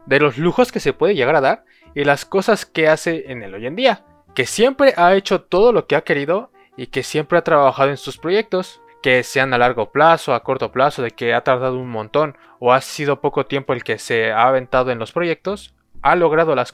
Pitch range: 130-195 Hz